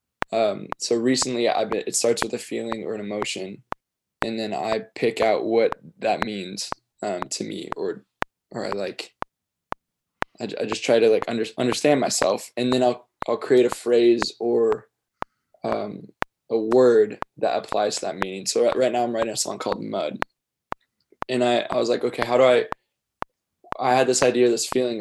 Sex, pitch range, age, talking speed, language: male, 115-130 Hz, 20-39, 180 wpm, English